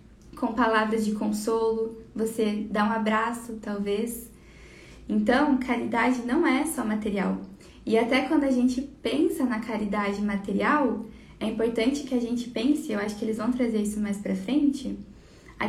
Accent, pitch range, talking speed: Brazilian, 210-255 Hz, 155 wpm